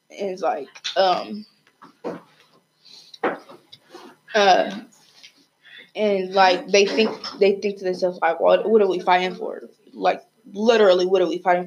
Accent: American